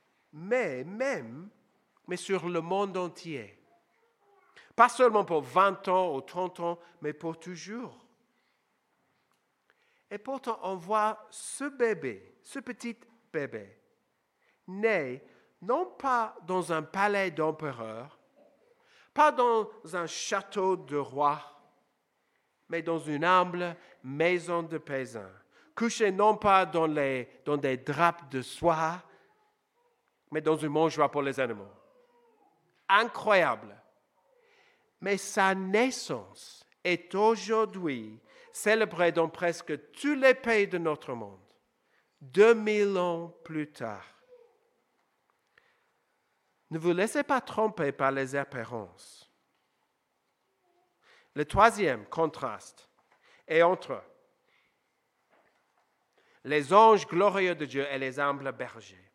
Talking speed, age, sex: 105 wpm, 50-69, male